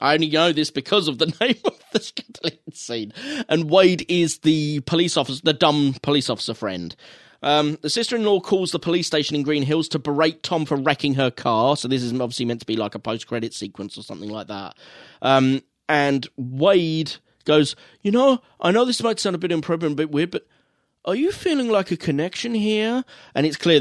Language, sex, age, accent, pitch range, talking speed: English, male, 20-39, British, 115-170 Hz, 210 wpm